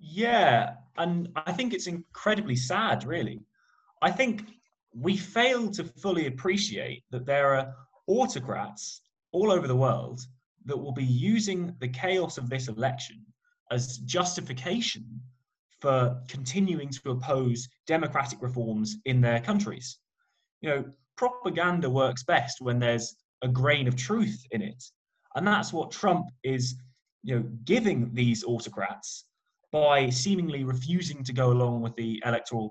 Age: 20-39